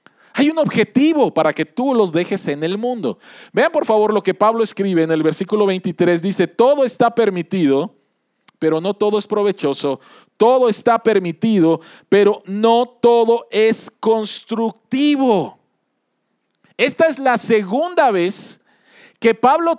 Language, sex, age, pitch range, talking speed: Spanish, male, 40-59, 180-235 Hz, 140 wpm